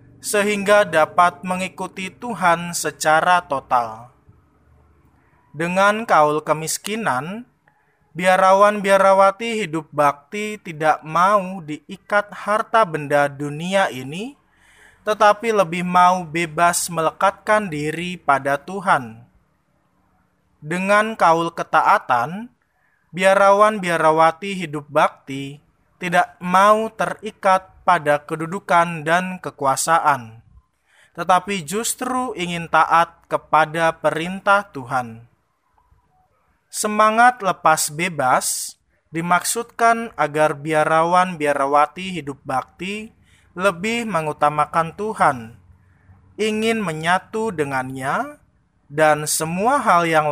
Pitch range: 150-195 Hz